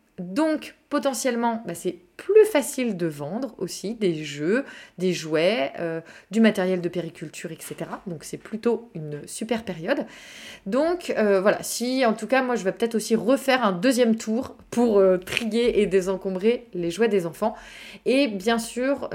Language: French